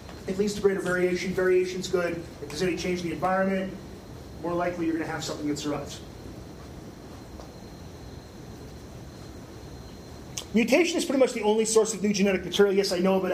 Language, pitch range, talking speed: English, 165-210 Hz, 175 wpm